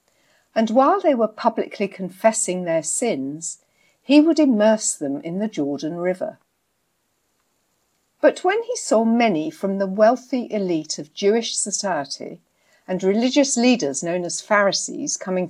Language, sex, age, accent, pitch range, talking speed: English, female, 60-79, British, 175-275 Hz, 135 wpm